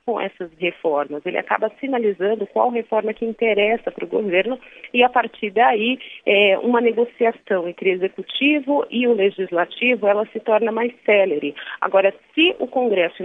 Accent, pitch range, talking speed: Brazilian, 175-230 Hz, 160 wpm